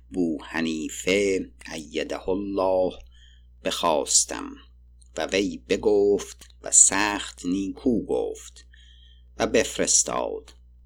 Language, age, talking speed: Persian, 50-69, 75 wpm